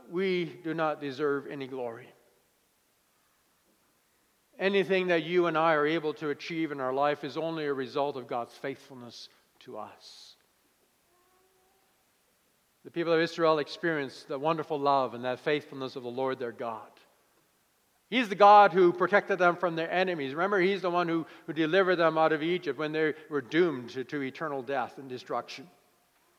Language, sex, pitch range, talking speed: English, male, 140-195 Hz, 165 wpm